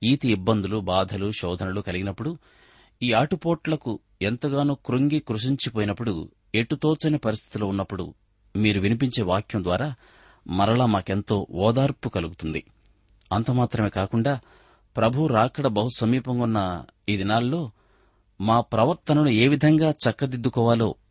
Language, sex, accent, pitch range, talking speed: Telugu, male, native, 95-125 Hz, 100 wpm